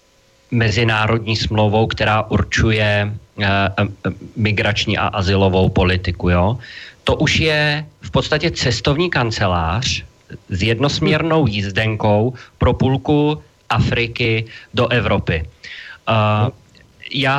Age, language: 40-59, Slovak